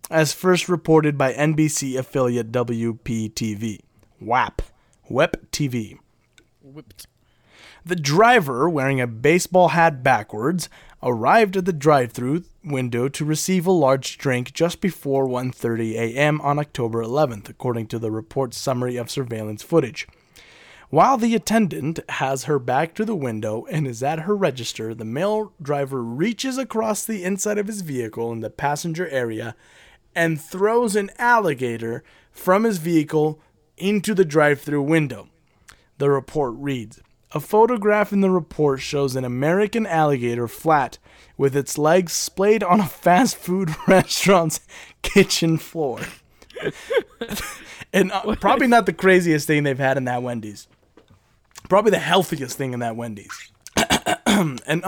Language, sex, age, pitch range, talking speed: English, male, 20-39, 125-185 Hz, 135 wpm